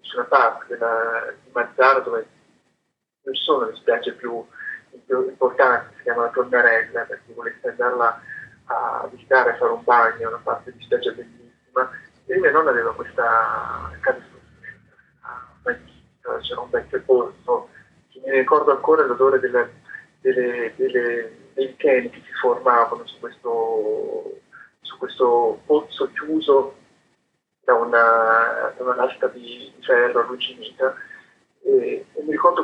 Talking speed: 130 wpm